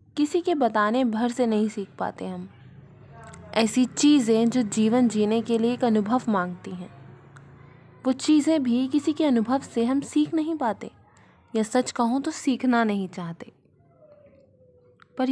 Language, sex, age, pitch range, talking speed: Hindi, female, 20-39, 190-255 Hz, 155 wpm